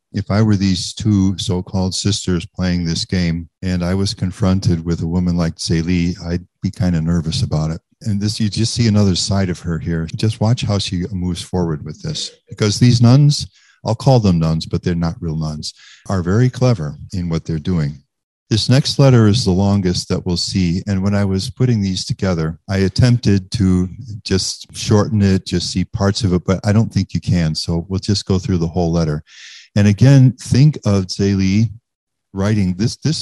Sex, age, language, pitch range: male, 50-69, English, 90-110 Hz